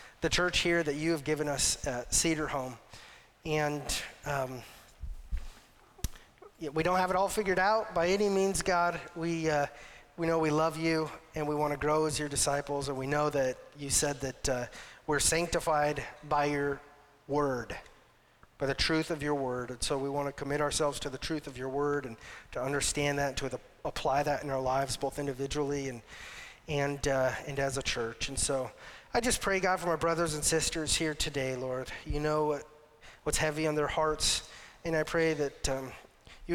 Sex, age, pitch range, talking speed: male, 30-49, 130-155 Hz, 195 wpm